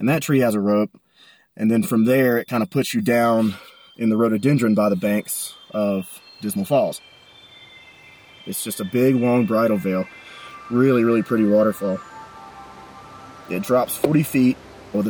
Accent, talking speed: American, 165 wpm